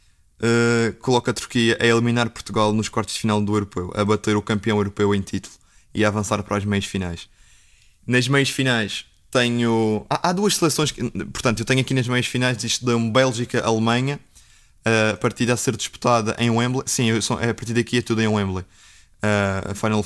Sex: male